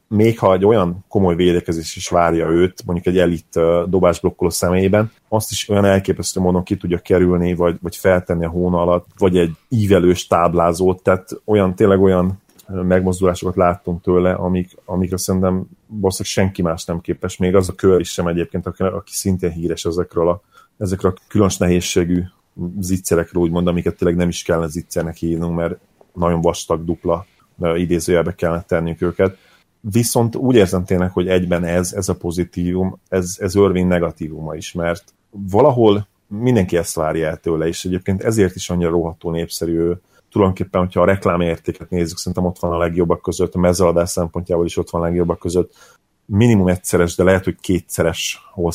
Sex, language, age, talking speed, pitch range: male, Hungarian, 30-49, 170 wpm, 85-95 Hz